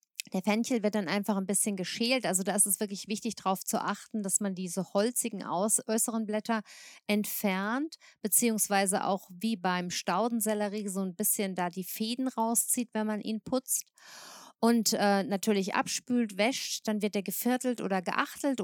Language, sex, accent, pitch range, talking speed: German, female, German, 200-235 Hz, 165 wpm